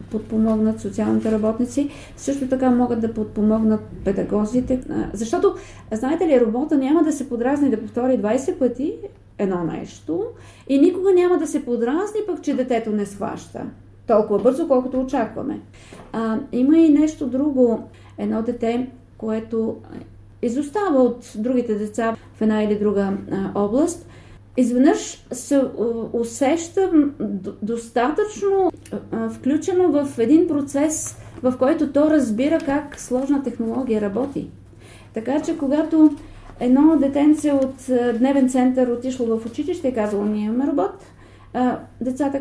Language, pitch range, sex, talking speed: Bulgarian, 230-290 Hz, female, 125 wpm